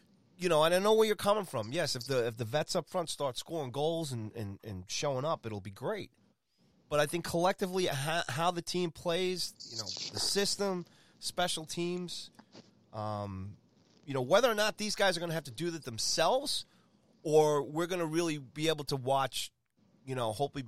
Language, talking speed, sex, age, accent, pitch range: English, 200 wpm, male, 30-49, American, 110-165 Hz